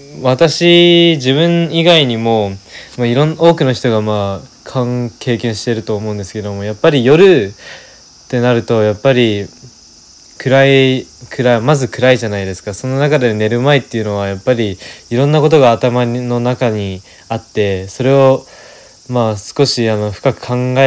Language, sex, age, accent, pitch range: Japanese, male, 20-39, native, 105-135 Hz